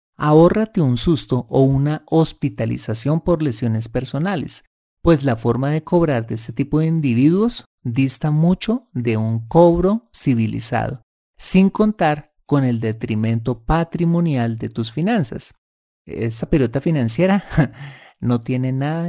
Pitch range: 120-180 Hz